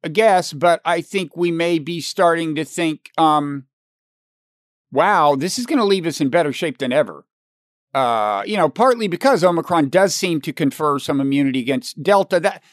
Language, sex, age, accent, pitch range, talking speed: English, male, 50-69, American, 155-205 Hz, 185 wpm